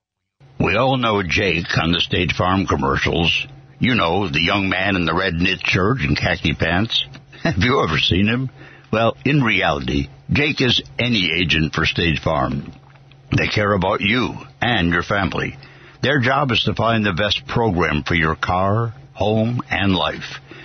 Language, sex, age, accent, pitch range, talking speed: English, male, 60-79, American, 85-125 Hz, 170 wpm